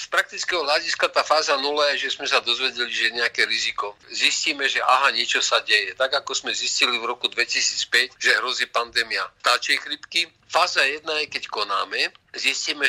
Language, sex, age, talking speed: Slovak, male, 50-69, 180 wpm